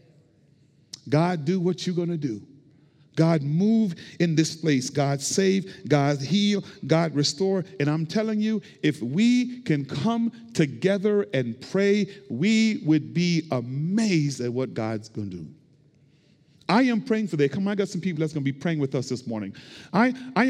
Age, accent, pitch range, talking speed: 50-69, American, 150-210 Hz, 175 wpm